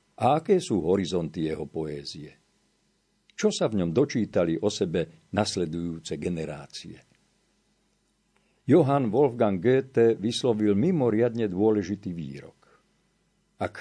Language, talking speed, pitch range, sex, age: Slovak, 100 wpm, 90-120 Hz, male, 50-69